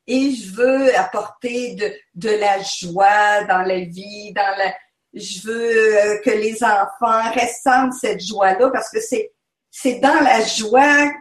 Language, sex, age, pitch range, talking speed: French, female, 50-69, 195-260 Hz, 150 wpm